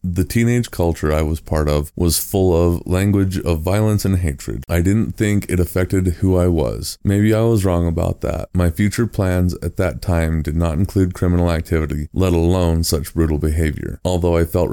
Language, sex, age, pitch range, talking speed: English, male, 30-49, 80-95 Hz, 195 wpm